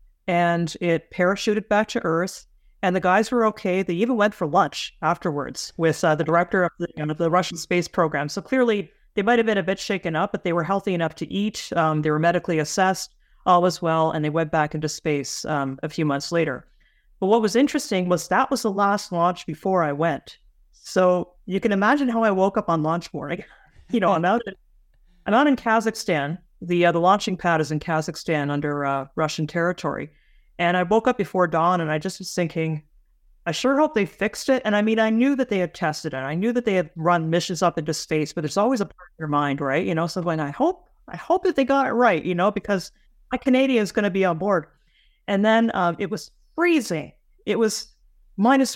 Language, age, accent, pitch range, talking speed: English, 30-49, American, 165-210 Hz, 225 wpm